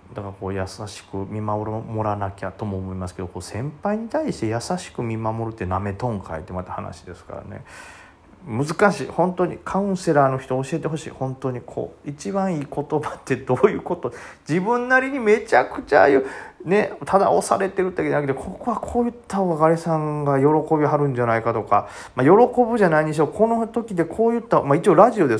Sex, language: male, Japanese